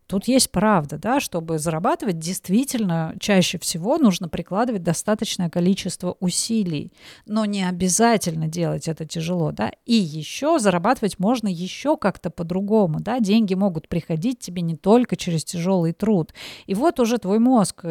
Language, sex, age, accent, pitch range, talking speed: Russian, female, 30-49, native, 180-230 Hz, 145 wpm